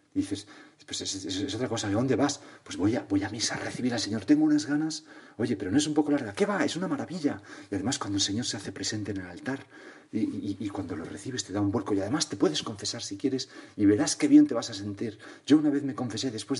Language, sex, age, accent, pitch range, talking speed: Spanish, male, 40-59, Spanish, 110-160 Hz, 280 wpm